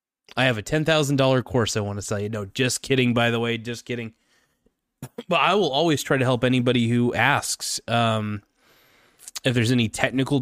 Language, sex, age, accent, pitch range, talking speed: English, male, 20-39, American, 110-130 Hz, 190 wpm